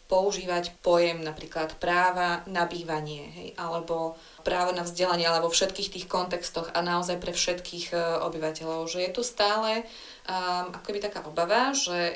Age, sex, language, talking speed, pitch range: 20-39, female, Slovak, 150 wpm, 175-205 Hz